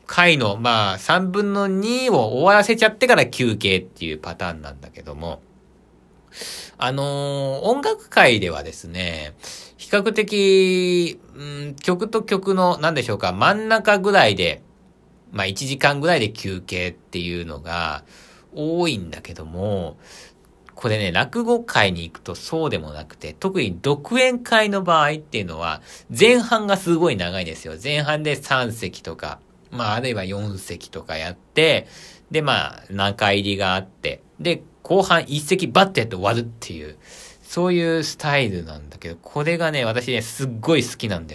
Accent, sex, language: native, male, Japanese